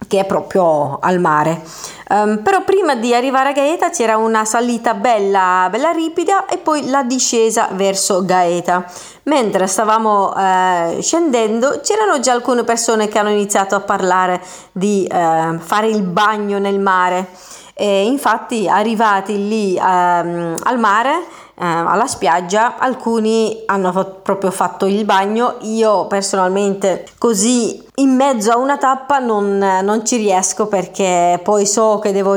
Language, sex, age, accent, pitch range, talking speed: Italian, female, 30-49, native, 190-255 Hz, 140 wpm